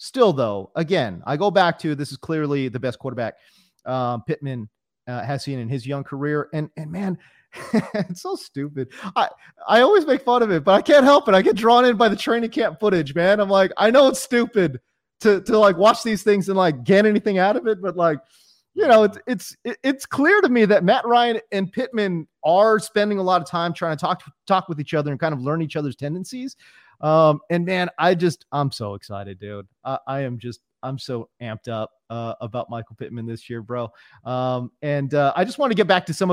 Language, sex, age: English, male, 30-49